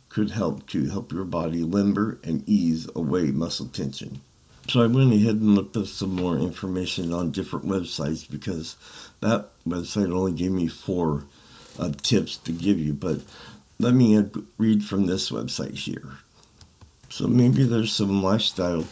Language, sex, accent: English, male, American